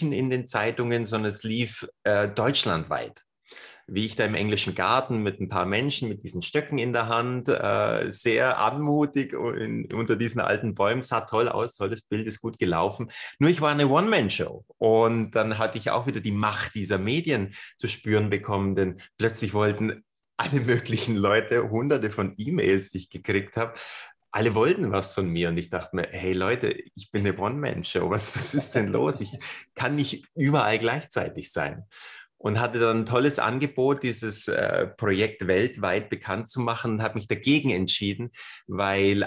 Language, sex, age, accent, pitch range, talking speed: German, male, 30-49, German, 100-125 Hz, 175 wpm